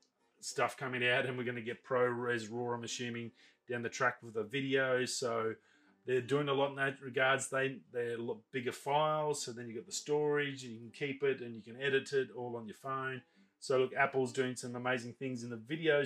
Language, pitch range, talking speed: English, 120-140 Hz, 240 wpm